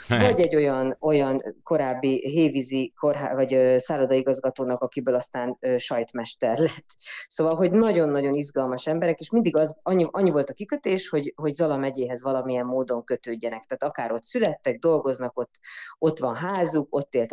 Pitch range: 130-165 Hz